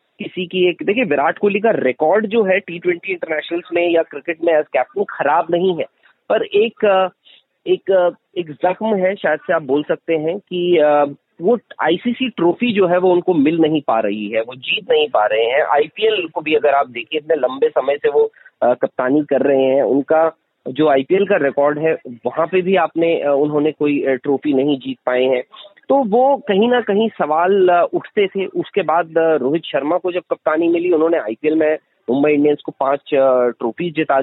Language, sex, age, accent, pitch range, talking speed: Hindi, male, 30-49, native, 150-195 Hz, 195 wpm